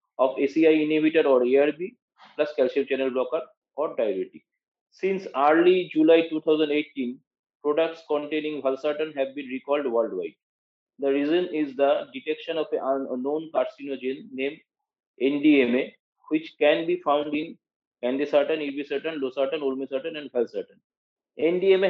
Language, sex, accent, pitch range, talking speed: English, male, Indian, 135-160 Hz, 125 wpm